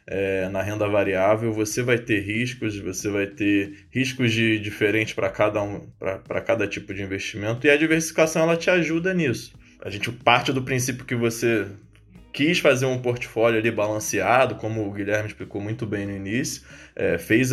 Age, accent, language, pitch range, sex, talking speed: 20-39, Brazilian, English, 105-140 Hz, male, 180 wpm